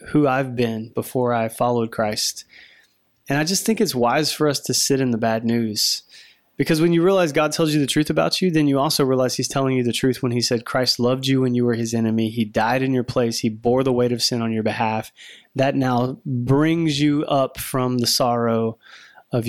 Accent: American